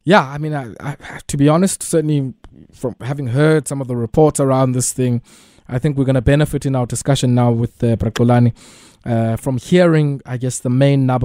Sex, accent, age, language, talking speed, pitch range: male, South African, 20-39, English, 195 wpm, 120-160 Hz